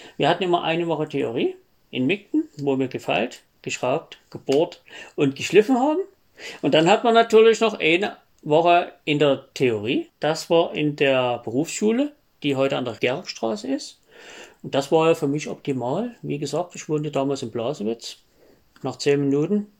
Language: German